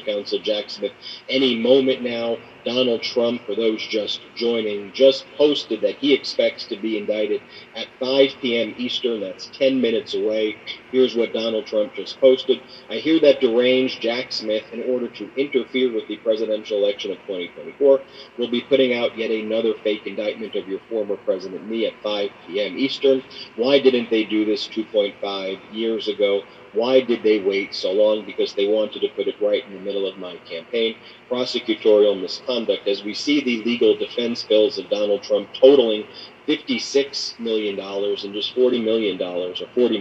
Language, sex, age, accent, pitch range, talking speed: English, male, 40-59, American, 110-150 Hz, 170 wpm